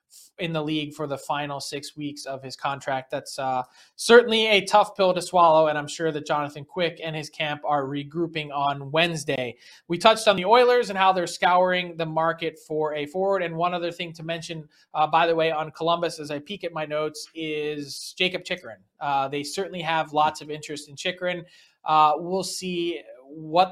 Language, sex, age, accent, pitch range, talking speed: English, male, 20-39, American, 150-185 Hz, 195 wpm